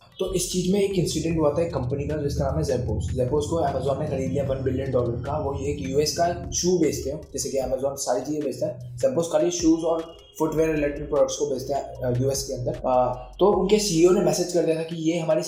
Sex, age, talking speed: male, 20-39, 245 wpm